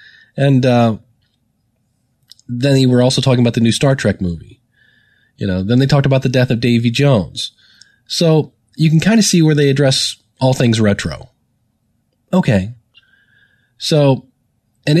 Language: English